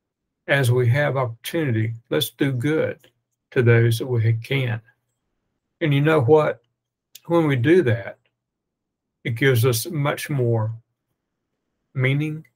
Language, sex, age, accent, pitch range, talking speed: English, male, 60-79, American, 115-135 Hz, 125 wpm